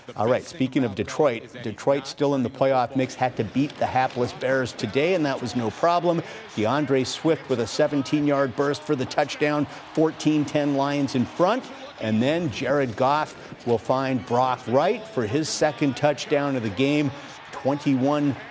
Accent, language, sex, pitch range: American, English, male, 125-150 Hz